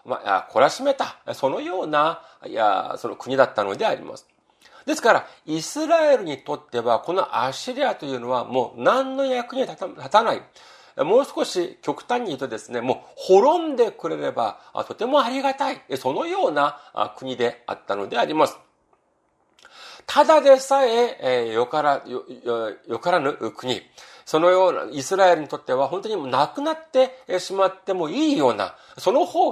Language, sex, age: Japanese, male, 40-59